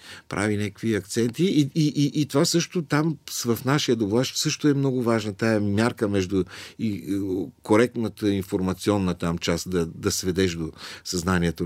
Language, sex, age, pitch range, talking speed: Bulgarian, male, 50-69, 90-130 Hz, 155 wpm